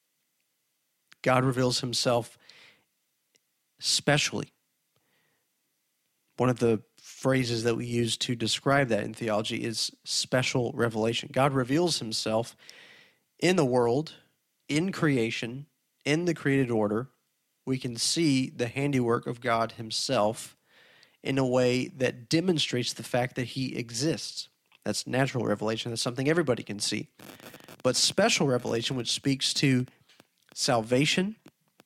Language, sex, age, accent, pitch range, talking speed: English, male, 40-59, American, 120-145 Hz, 120 wpm